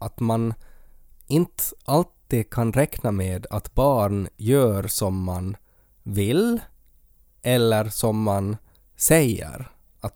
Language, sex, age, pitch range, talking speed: Swedish, male, 20-39, 105-135 Hz, 105 wpm